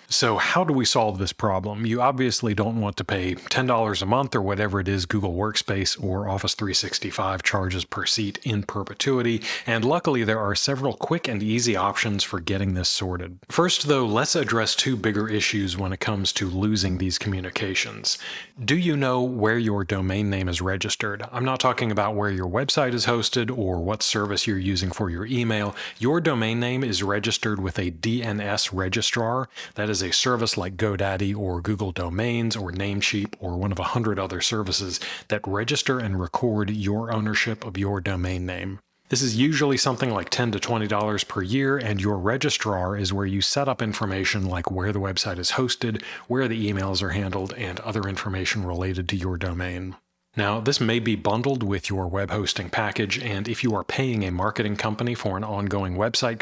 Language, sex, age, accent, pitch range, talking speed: English, male, 30-49, American, 95-115 Hz, 190 wpm